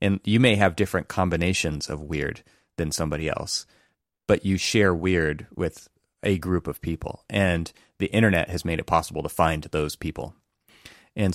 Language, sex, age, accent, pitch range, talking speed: English, male, 30-49, American, 80-100 Hz, 170 wpm